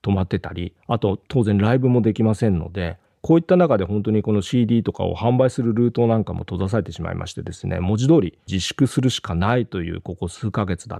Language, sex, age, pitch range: Japanese, male, 40-59, 90-130 Hz